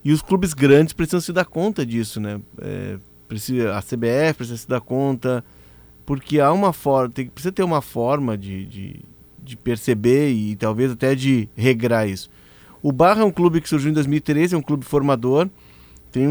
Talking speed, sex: 190 wpm, male